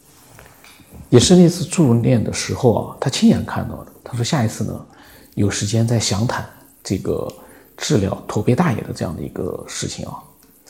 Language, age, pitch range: Chinese, 50-69, 110-145 Hz